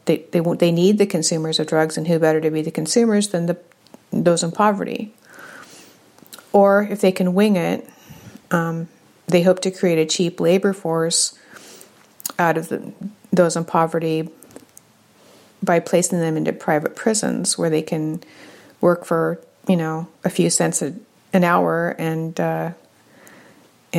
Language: English